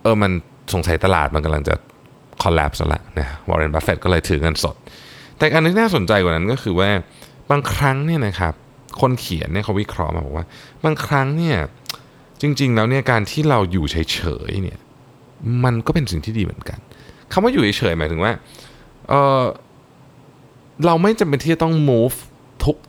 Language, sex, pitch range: Thai, male, 90-135 Hz